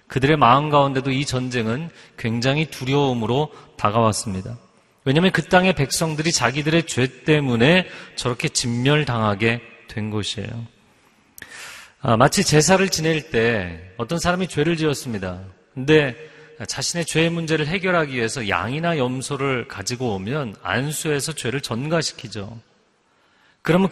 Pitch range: 120-170 Hz